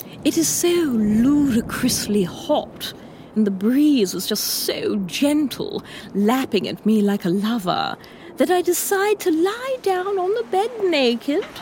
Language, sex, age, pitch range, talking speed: English, female, 30-49, 235-395 Hz, 145 wpm